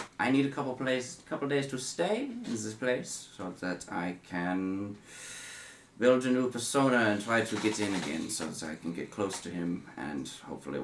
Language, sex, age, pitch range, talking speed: English, male, 30-49, 90-130 Hz, 200 wpm